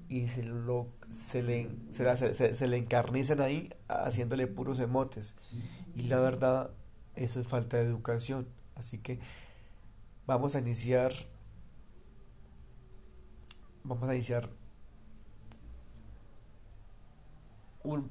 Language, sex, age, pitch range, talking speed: Spanish, male, 40-59, 115-130 Hz, 105 wpm